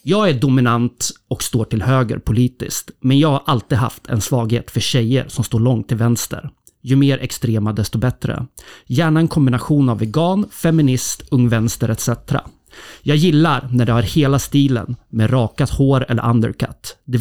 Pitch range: 115-135 Hz